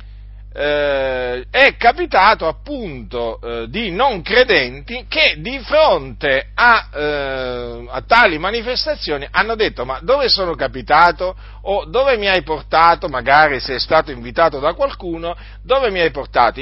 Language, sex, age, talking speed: Italian, male, 50-69, 135 wpm